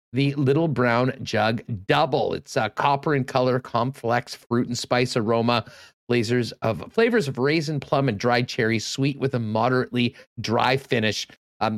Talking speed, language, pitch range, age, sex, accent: 160 wpm, English, 120-155 Hz, 40-59, male, American